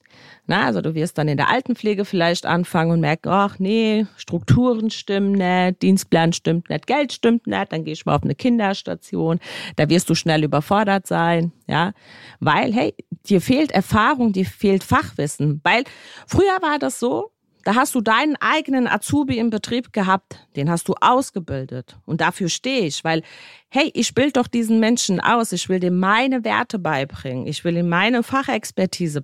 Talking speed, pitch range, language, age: 175 wpm, 175-240 Hz, German, 40-59